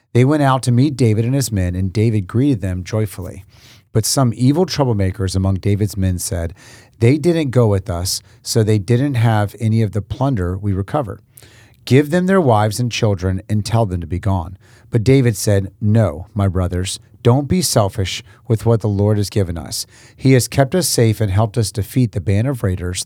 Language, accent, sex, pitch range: English, American, male, 100-125 Hz